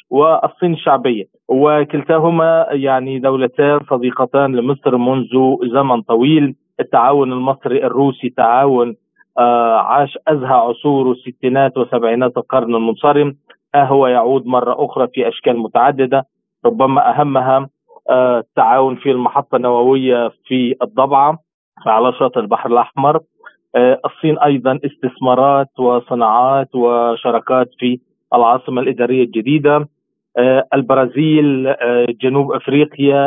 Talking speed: 105 wpm